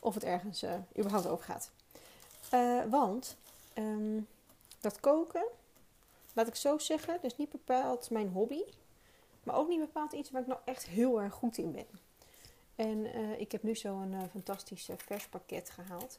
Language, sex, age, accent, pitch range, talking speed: Dutch, female, 30-49, Dutch, 195-245 Hz, 170 wpm